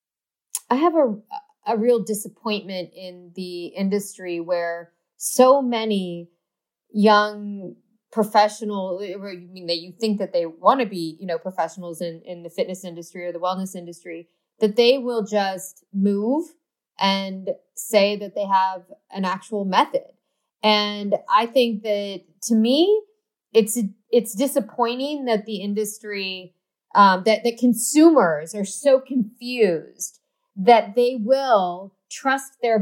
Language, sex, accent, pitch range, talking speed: English, female, American, 190-245 Hz, 130 wpm